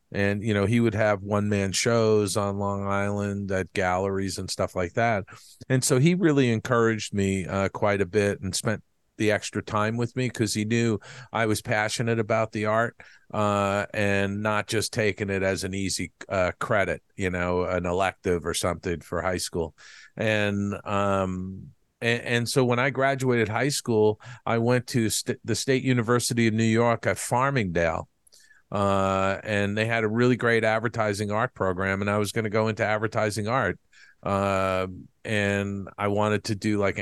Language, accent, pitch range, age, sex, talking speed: English, American, 95-115 Hz, 50-69, male, 180 wpm